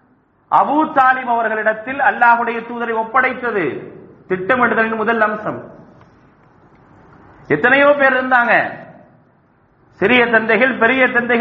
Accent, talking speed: Indian, 85 wpm